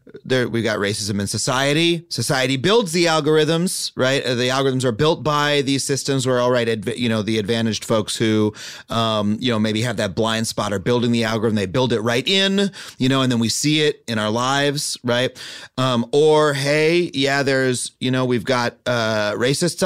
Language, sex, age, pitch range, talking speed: English, male, 30-49, 110-140 Hz, 200 wpm